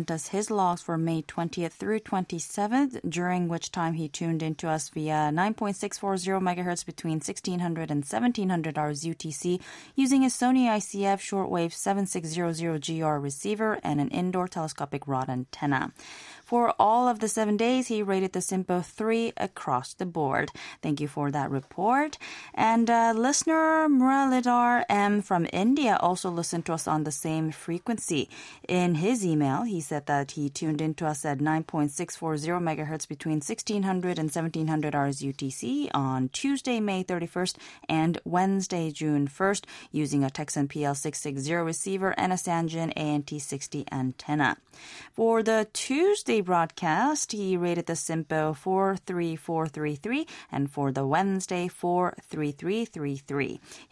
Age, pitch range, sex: 20-39, 155-200 Hz, female